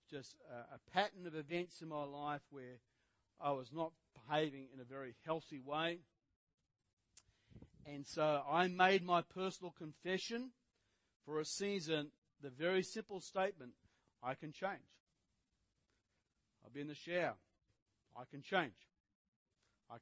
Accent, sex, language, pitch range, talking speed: Australian, male, English, 120-170 Hz, 130 wpm